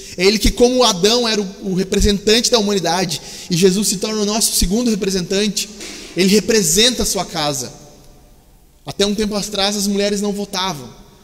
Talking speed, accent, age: 165 wpm, Brazilian, 20-39